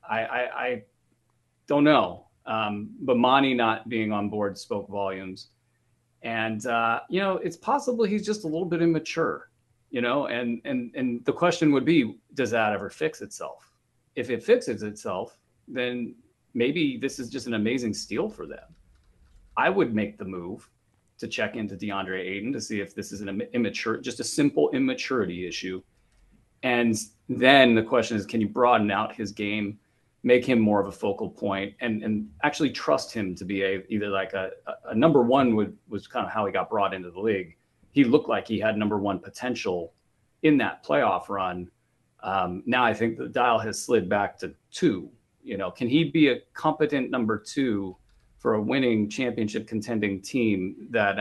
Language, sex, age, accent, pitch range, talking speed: English, male, 30-49, American, 100-130 Hz, 185 wpm